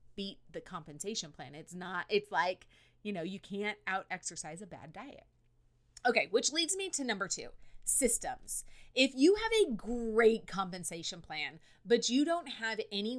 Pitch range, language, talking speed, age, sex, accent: 165-230 Hz, English, 170 wpm, 30-49, female, American